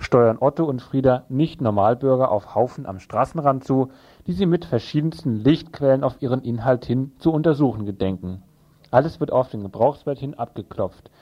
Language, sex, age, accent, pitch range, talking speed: German, male, 40-59, German, 115-150 Hz, 155 wpm